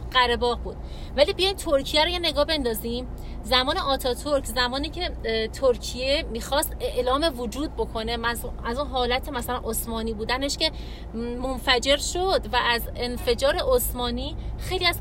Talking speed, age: 135 wpm, 30-49